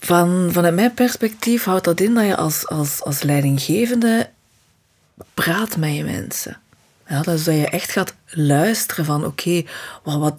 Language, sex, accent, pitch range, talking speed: Dutch, female, Dutch, 155-200 Hz, 165 wpm